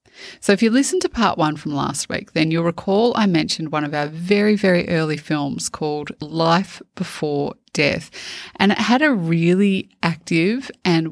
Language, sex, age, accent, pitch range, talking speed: English, female, 30-49, Australian, 155-195 Hz, 180 wpm